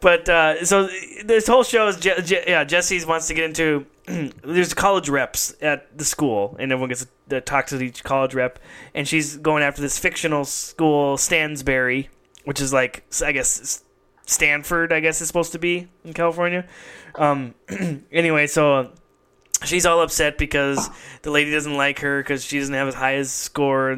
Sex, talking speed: male, 185 wpm